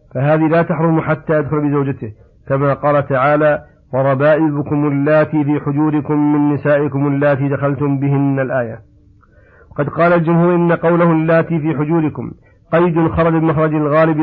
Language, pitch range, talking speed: Arabic, 140-160 Hz, 130 wpm